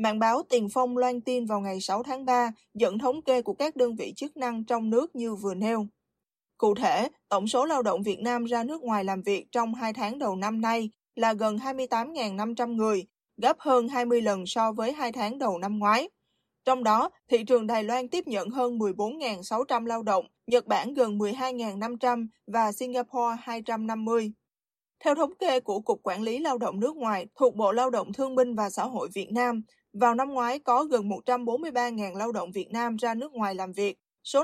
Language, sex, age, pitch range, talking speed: Vietnamese, female, 20-39, 215-255 Hz, 200 wpm